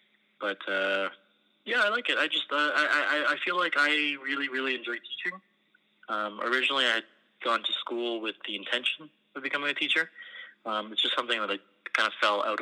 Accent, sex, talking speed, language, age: American, male, 205 wpm, English, 20-39